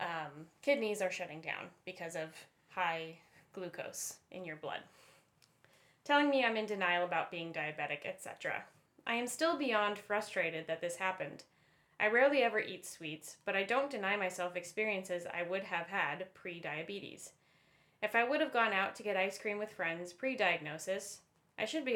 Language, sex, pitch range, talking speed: English, female, 170-215 Hz, 165 wpm